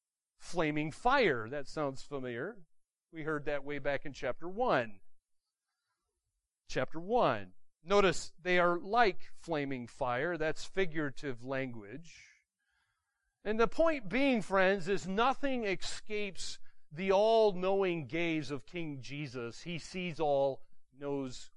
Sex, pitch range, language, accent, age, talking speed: male, 135-205 Hz, English, American, 40-59, 115 wpm